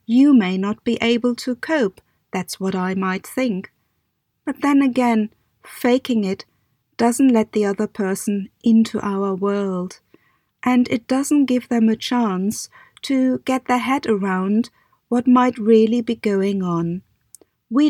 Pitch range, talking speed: 200-245 Hz, 150 wpm